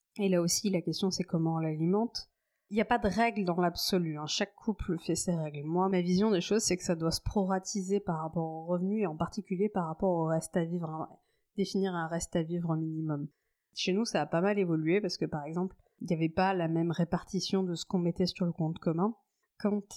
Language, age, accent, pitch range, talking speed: French, 30-49, French, 165-195 Hz, 240 wpm